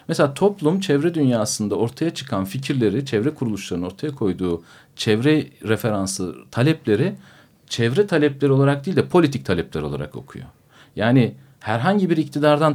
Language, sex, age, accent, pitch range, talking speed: Turkish, male, 50-69, native, 110-150 Hz, 125 wpm